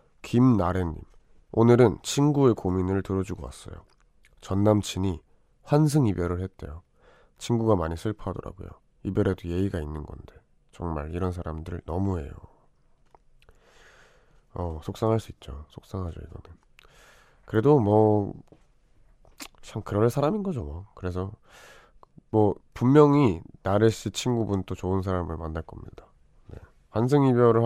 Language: Korean